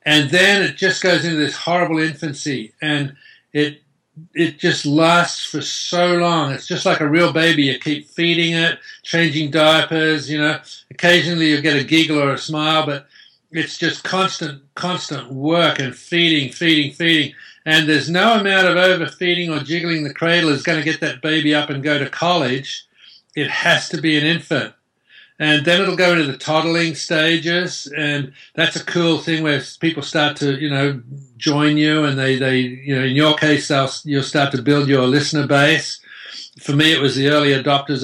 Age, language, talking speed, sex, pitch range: 60-79, English, 190 wpm, male, 145-170 Hz